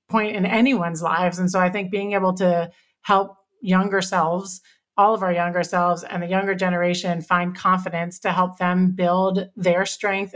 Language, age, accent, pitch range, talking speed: English, 30-49, American, 180-205 Hz, 180 wpm